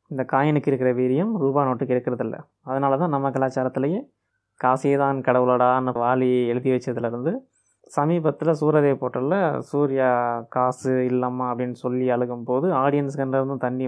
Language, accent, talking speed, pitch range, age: Tamil, native, 125 wpm, 125-150 Hz, 20-39